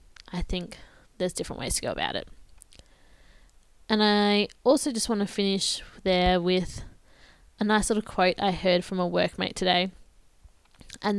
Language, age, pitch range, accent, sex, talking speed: English, 10-29, 175-210 Hz, Australian, female, 155 wpm